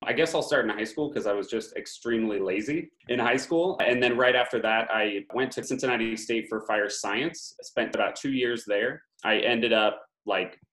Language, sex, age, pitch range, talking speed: English, male, 30-49, 100-125 Hz, 220 wpm